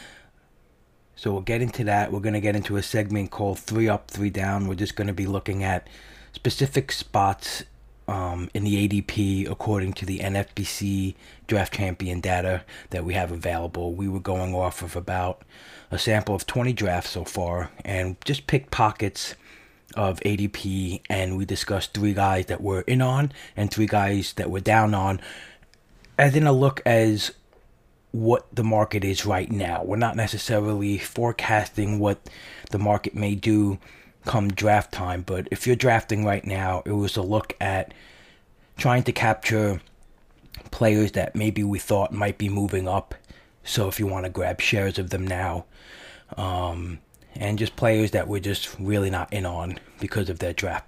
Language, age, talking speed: English, 30-49, 175 wpm